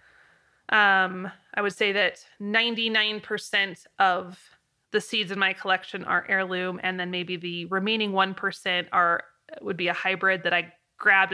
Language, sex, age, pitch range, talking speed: English, female, 20-39, 185-220 Hz, 150 wpm